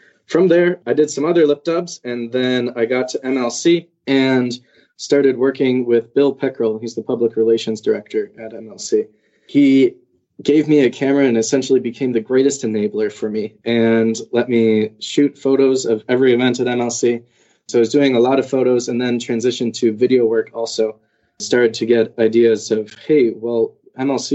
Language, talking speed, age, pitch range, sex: English, 180 wpm, 20-39, 115-140 Hz, male